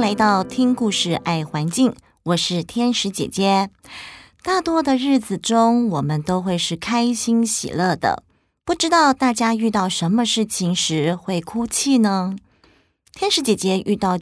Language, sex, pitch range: Chinese, female, 170-235 Hz